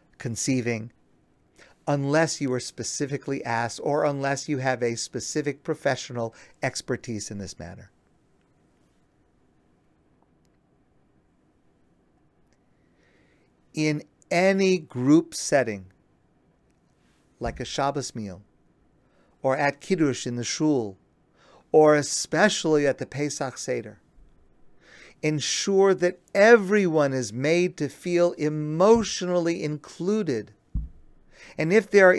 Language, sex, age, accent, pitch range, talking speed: English, male, 50-69, American, 130-175 Hz, 95 wpm